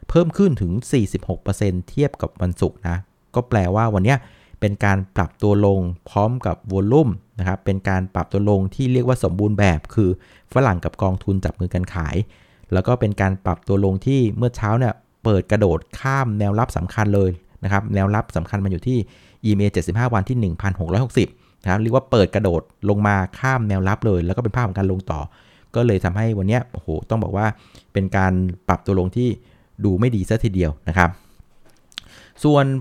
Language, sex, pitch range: Thai, male, 95-125 Hz